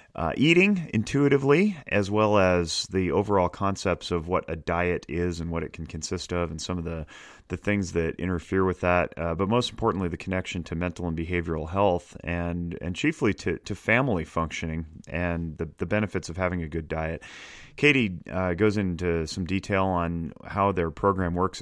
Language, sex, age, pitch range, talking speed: English, male, 30-49, 80-90 Hz, 190 wpm